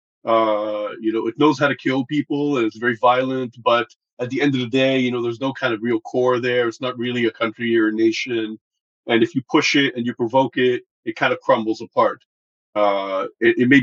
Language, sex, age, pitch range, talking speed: English, male, 40-59, 115-145 Hz, 240 wpm